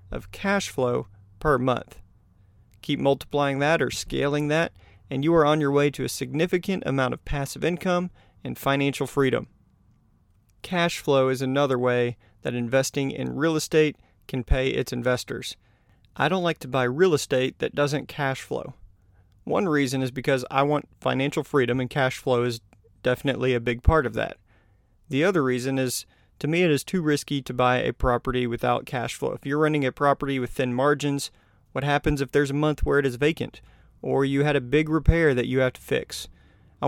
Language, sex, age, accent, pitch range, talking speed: English, male, 40-59, American, 120-145 Hz, 190 wpm